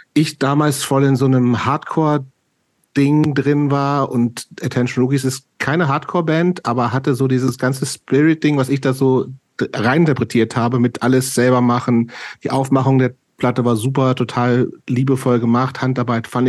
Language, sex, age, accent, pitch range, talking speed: German, male, 40-59, German, 115-140 Hz, 155 wpm